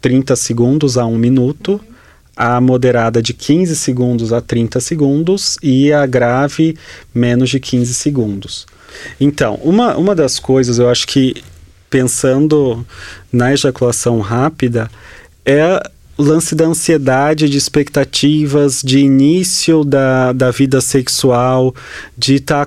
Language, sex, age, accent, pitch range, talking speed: Portuguese, male, 30-49, Brazilian, 120-145 Hz, 125 wpm